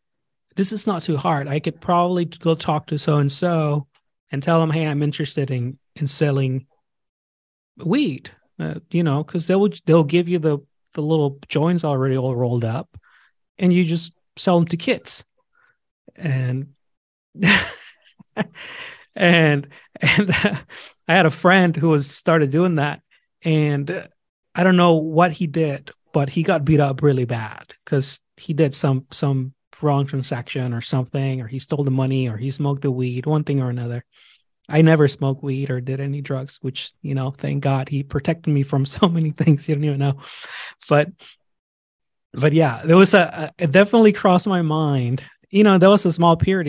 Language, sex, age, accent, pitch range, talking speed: English, male, 30-49, American, 135-170 Hz, 175 wpm